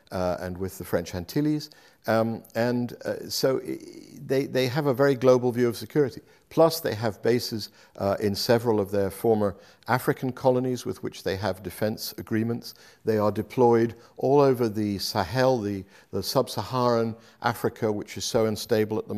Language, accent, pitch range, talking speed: Finnish, British, 100-125 Hz, 170 wpm